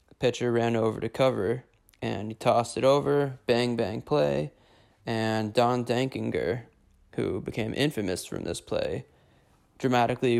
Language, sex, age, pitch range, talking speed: English, male, 20-39, 110-120 Hz, 135 wpm